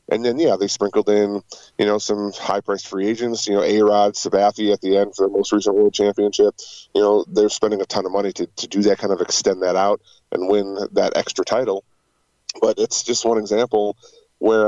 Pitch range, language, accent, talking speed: 100-120 Hz, English, American, 215 wpm